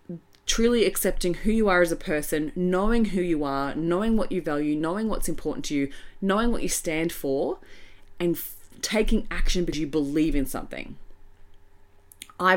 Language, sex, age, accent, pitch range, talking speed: English, female, 30-49, Australian, 140-195 Hz, 165 wpm